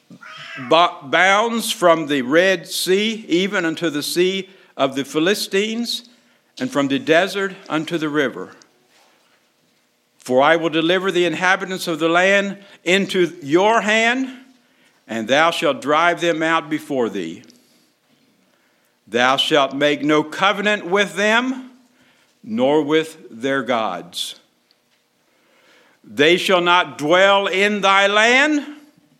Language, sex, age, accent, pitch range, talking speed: English, male, 60-79, American, 135-200 Hz, 115 wpm